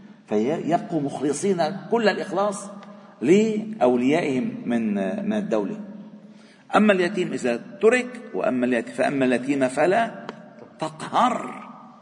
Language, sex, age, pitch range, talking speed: Arabic, male, 50-69, 130-210 Hz, 90 wpm